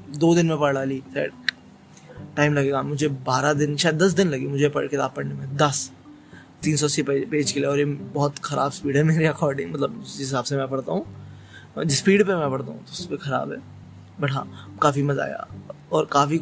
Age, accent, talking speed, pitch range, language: 20-39, native, 90 wpm, 140-170 Hz, Hindi